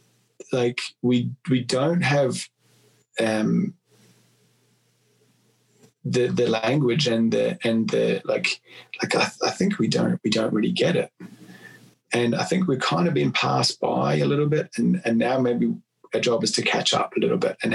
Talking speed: 175 wpm